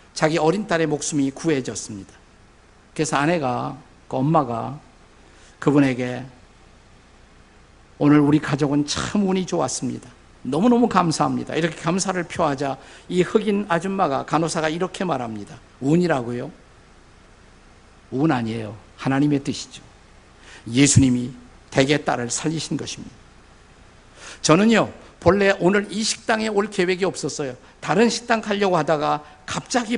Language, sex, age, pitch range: Korean, male, 50-69, 125-170 Hz